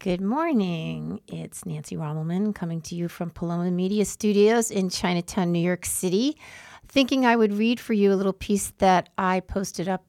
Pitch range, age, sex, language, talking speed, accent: 175-210 Hz, 50-69, female, English, 180 wpm, American